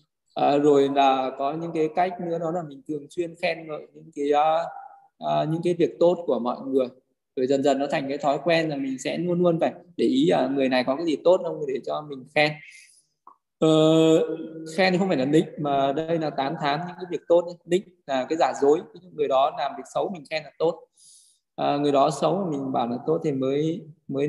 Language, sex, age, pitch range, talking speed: Vietnamese, male, 20-39, 140-170 Hz, 230 wpm